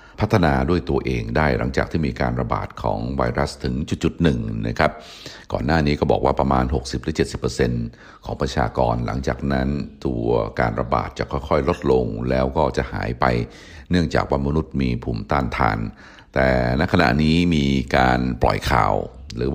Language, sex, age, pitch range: Thai, male, 60-79, 65-80 Hz